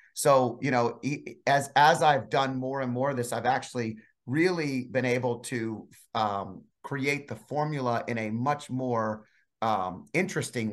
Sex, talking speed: male, 155 wpm